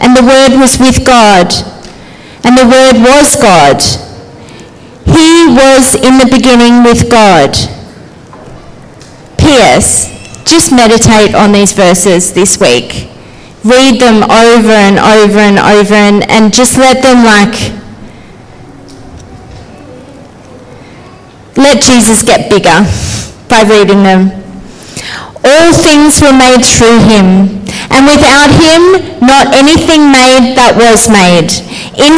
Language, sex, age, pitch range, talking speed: English, female, 40-59, 215-265 Hz, 115 wpm